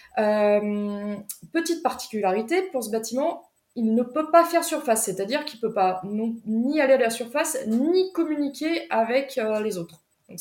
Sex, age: female, 20-39